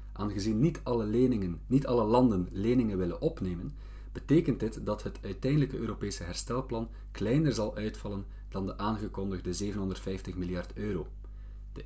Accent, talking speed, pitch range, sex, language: Dutch, 125 wpm, 95-120 Hz, male, Dutch